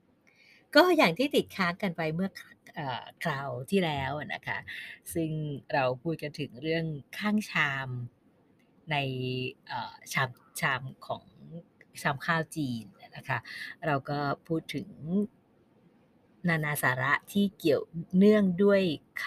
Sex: female